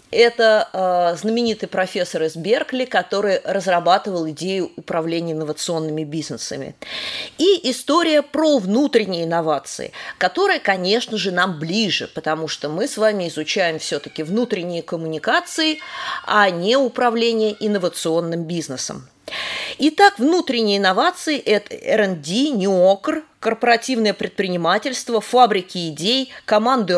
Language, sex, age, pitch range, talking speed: Russian, female, 20-39, 180-275 Hz, 105 wpm